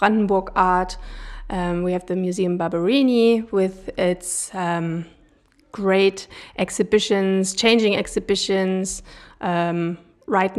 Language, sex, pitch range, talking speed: German, female, 195-225 Hz, 95 wpm